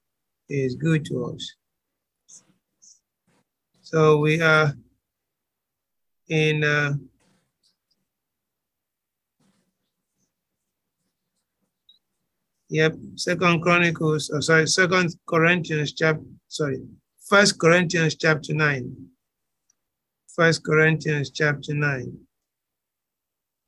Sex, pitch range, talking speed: male, 150-175 Hz, 65 wpm